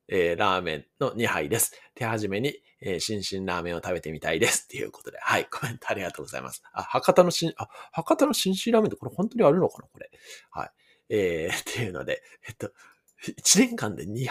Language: Japanese